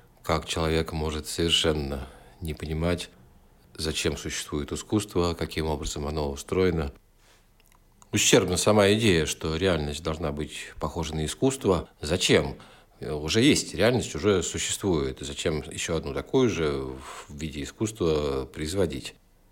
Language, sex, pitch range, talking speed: Russian, male, 80-105 Hz, 115 wpm